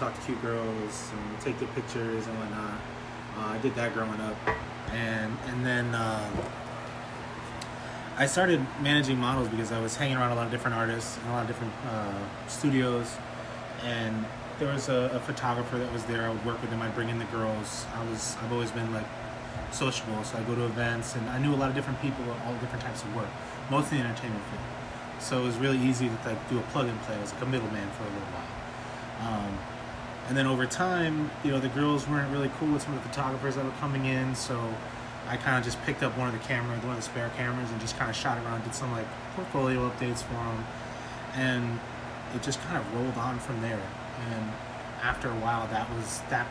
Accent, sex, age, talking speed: American, male, 20-39, 225 wpm